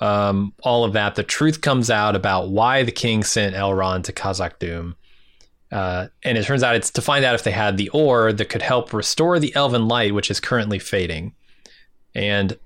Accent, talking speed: American, 205 wpm